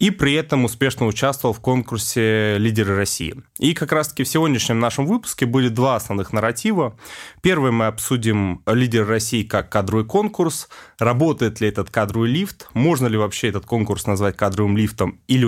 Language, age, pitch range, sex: Russian, 20-39, 105-130 Hz, male